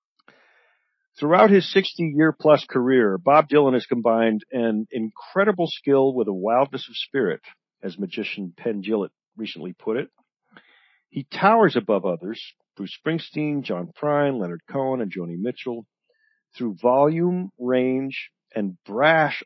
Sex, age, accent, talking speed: male, 50-69, American, 125 wpm